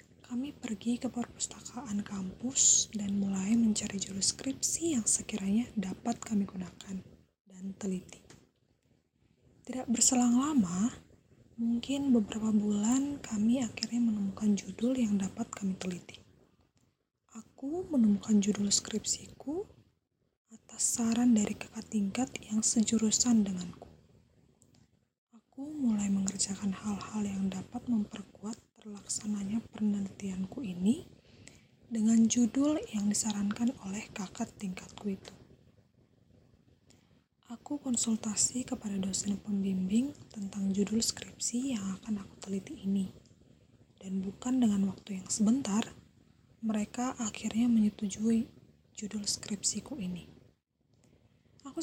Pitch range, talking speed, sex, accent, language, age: 200-235 Hz, 95 wpm, female, native, Indonesian, 20-39